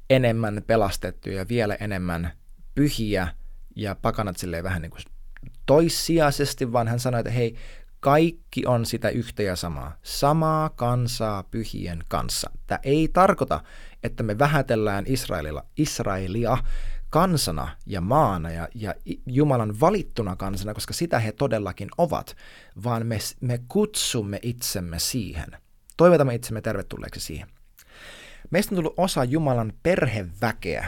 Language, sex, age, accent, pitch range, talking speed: Finnish, male, 20-39, native, 100-140 Hz, 125 wpm